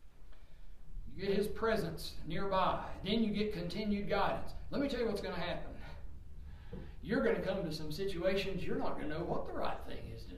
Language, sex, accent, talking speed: English, male, American, 200 wpm